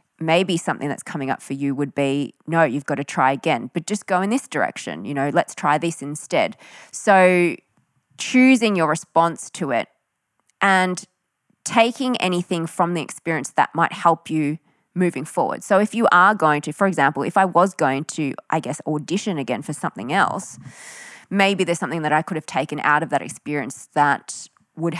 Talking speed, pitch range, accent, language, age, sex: 190 wpm, 150-185 Hz, Australian, English, 20-39, female